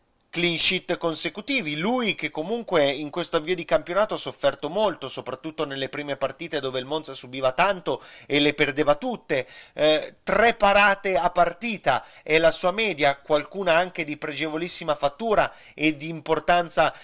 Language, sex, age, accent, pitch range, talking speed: Italian, male, 30-49, native, 150-190 Hz, 155 wpm